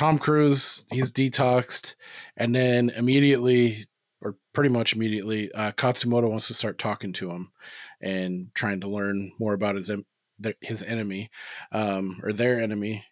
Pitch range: 105-130 Hz